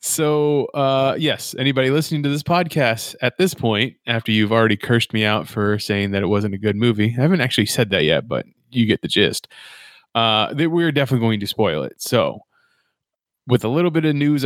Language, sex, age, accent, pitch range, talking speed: English, male, 20-39, American, 110-140 Hz, 210 wpm